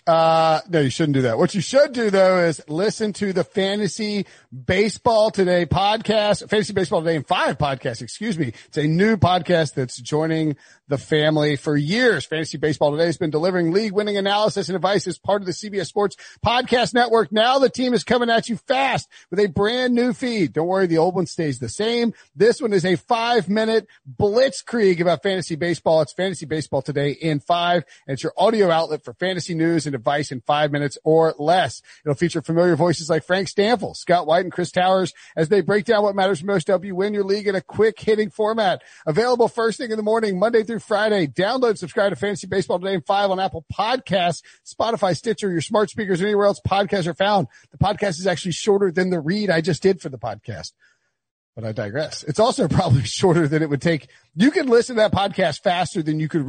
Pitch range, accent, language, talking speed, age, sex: 160-210 Hz, American, English, 215 wpm, 40-59, male